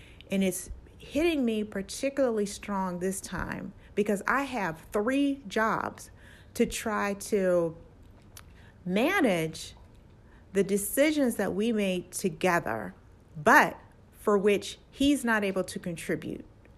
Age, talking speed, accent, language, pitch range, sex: 40-59, 110 wpm, American, English, 175-210 Hz, female